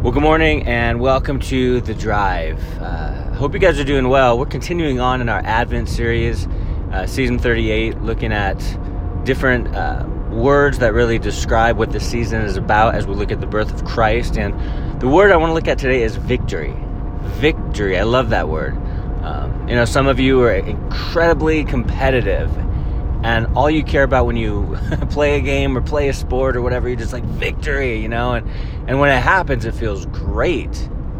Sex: male